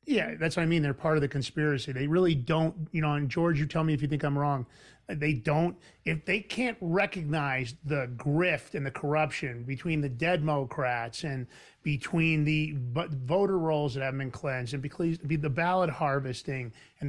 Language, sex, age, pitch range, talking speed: English, male, 40-59, 135-160 Hz, 195 wpm